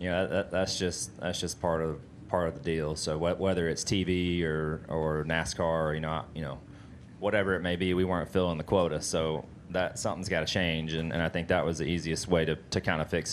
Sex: male